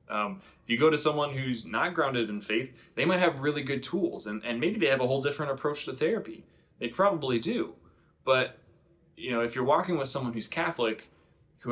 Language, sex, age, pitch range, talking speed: English, male, 20-39, 110-140 Hz, 215 wpm